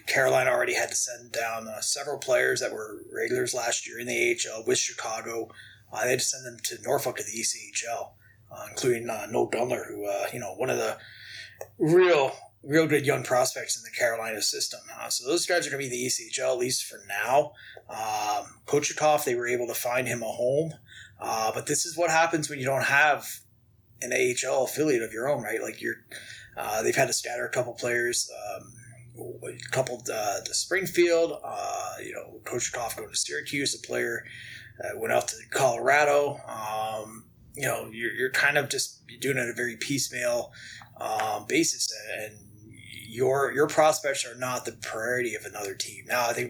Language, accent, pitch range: English, American, 115-160 Hz